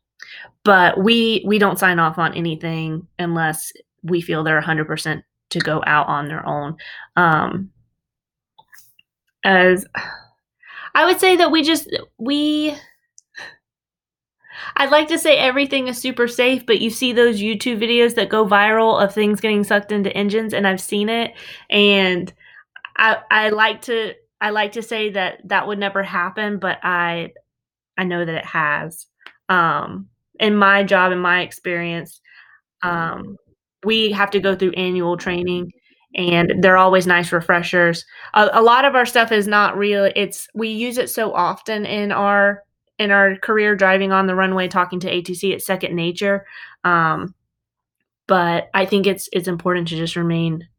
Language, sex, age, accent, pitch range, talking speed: English, female, 20-39, American, 180-225 Hz, 165 wpm